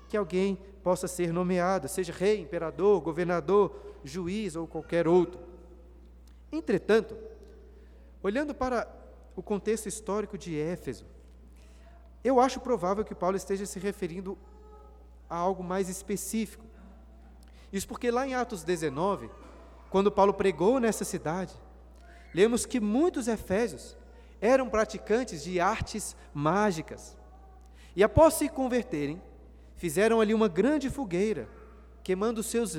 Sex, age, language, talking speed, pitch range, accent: male, 40-59, Portuguese, 120 wpm, 165-220 Hz, Brazilian